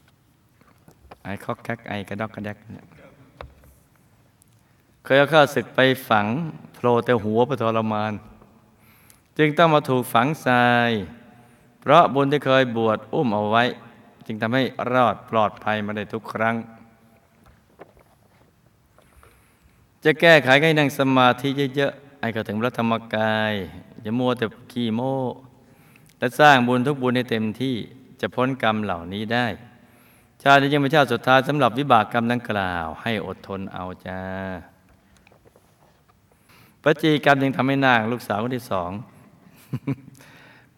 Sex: male